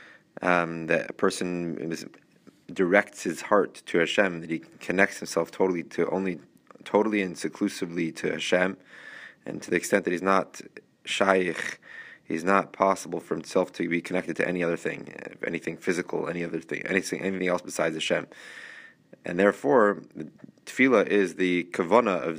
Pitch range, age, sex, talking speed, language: 90-100 Hz, 20-39, male, 160 wpm, English